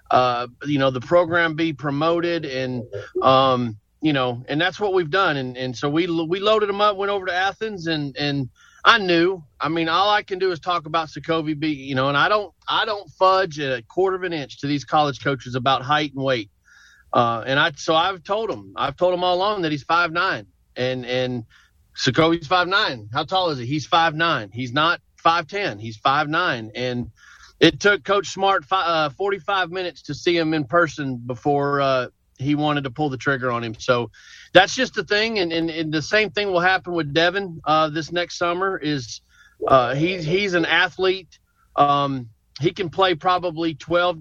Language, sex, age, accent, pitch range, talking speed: English, male, 40-59, American, 135-180 Hz, 210 wpm